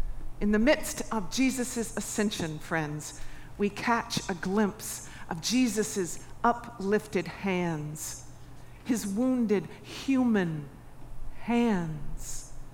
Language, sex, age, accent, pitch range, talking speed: English, female, 50-69, American, 155-245 Hz, 90 wpm